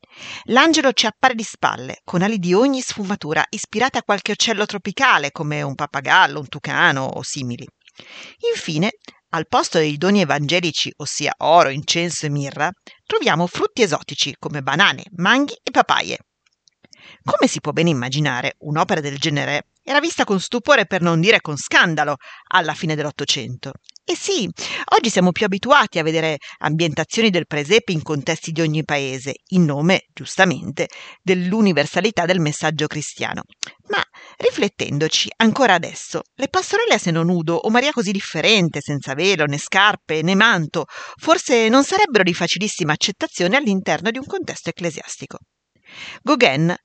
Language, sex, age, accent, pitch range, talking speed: Italian, female, 40-59, native, 150-225 Hz, 145 wpm